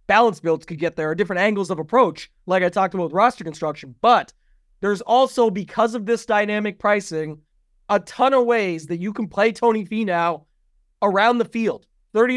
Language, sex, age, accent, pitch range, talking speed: English, male, 30-49, American, 185-230 Hz, 195 wpm